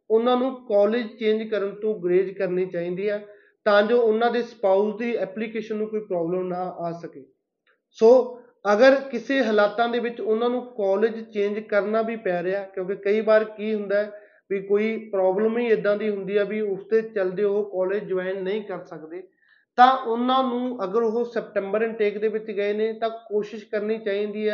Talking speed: 145 wpm